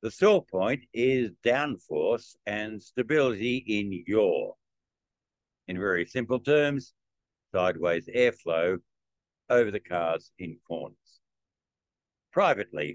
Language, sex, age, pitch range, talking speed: English, male, 60-79, 90-125 Hz, 95 wpm